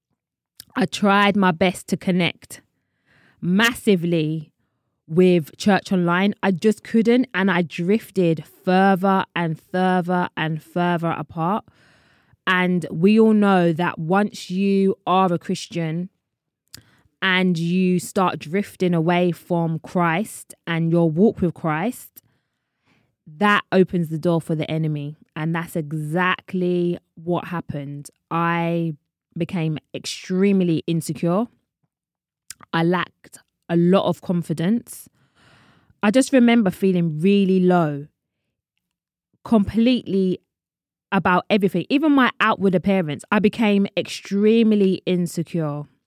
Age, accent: 20-39, British